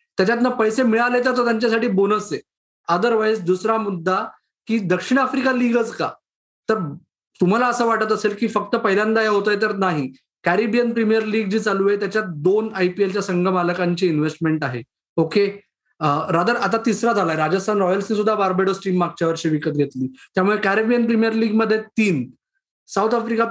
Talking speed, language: 170 wpm, Marathi